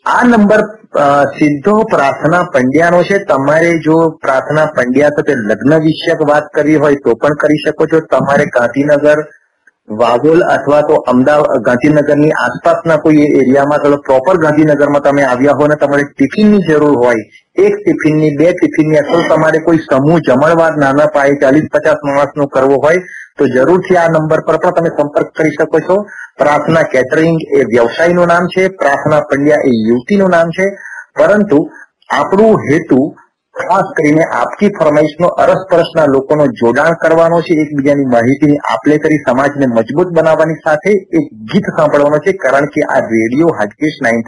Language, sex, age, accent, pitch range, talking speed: Gujarati, male, 30-49, native, 140-170 Hz, 150 wpm